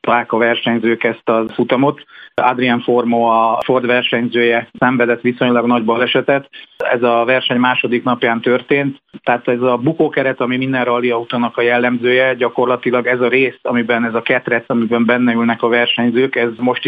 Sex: male